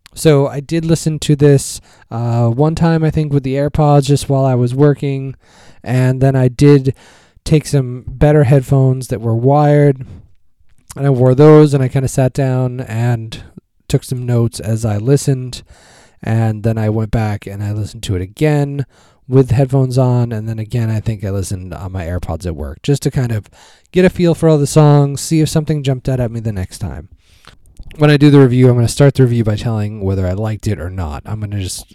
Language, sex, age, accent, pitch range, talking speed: English, male, 20-39, American, 105-140 Hz, 220 wpm